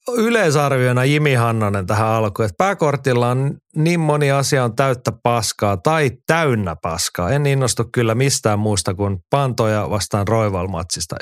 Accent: native